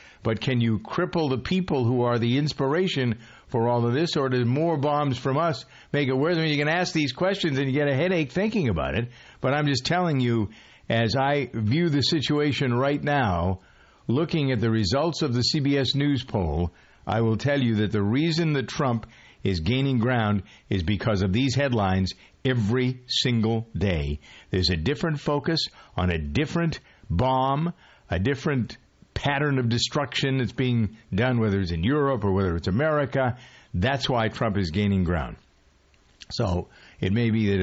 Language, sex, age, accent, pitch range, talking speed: English, male, 50-69, American, 105-145 Hz, 180 wpm